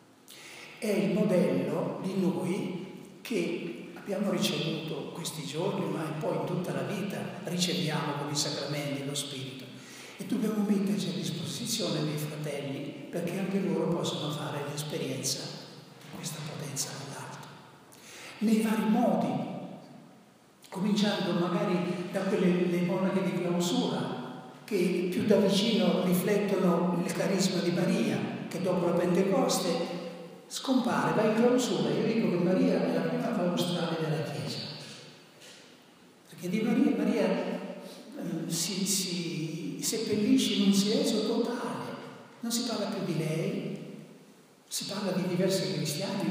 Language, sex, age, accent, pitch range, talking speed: Italian, male, 60-79, native, 160-200 Hz, 130 wpm